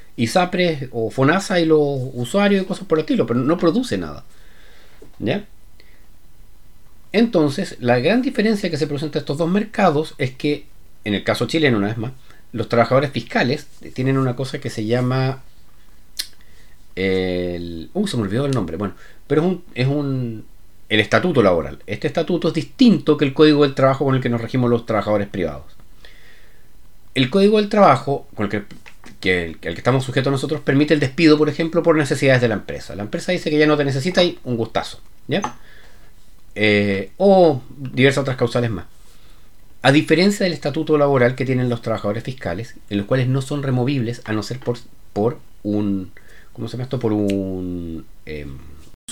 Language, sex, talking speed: Spanish, male, 185 wpm